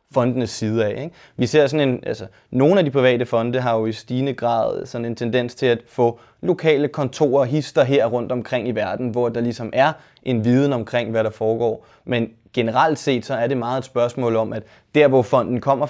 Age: 20-39